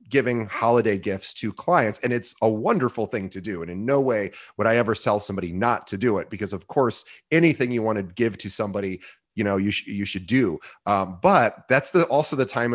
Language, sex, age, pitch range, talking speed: English, male, 30-49, 105-130 Hz, 230 wpm